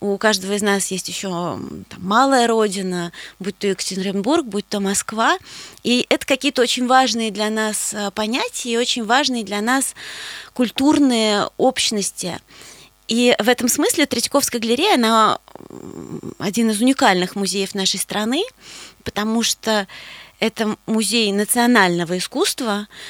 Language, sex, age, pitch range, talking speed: Russian, female, 20-39, 195-240 Hz, 125 wpm